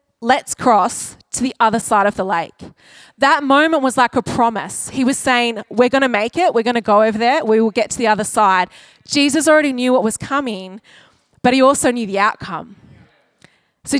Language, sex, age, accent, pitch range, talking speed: English, female, 20-39, Australian, 235-310 Hz, 210 wpm